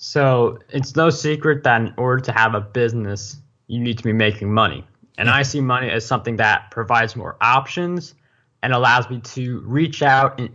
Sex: male